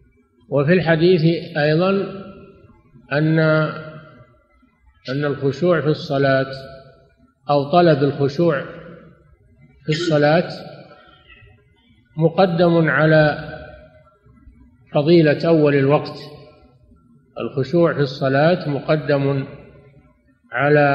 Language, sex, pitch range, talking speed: Arabic, male, 135-160 Hz, 65 wpm